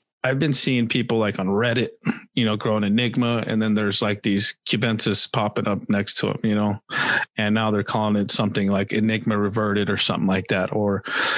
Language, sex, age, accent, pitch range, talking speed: English, male, 30-49, American, 110-125 Hz, 200 wpm